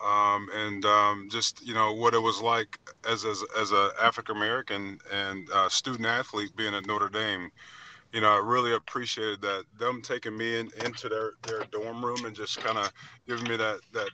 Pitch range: 100-115 Hz